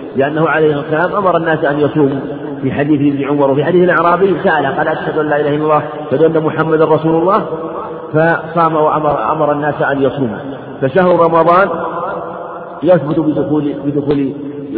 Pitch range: 140-160 Hz